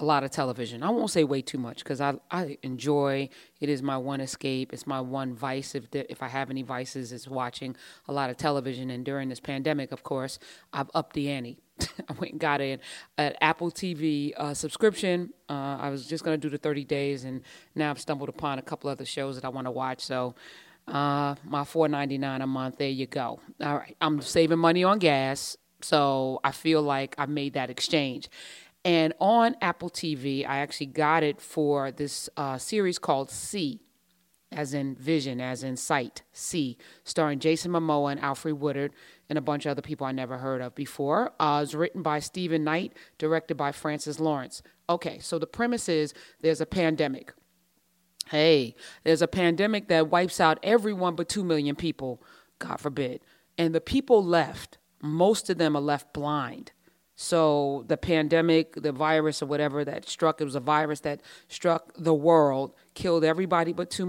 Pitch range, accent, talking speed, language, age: 140-165 Hz, American, 195 wpm, English, 30-49